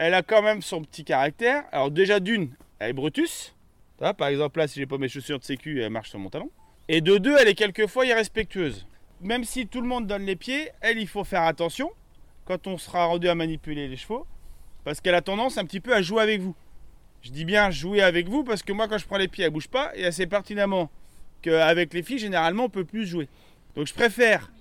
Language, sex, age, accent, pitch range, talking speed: French, male, 30-49, French, 160-220 Hz, 245 wpm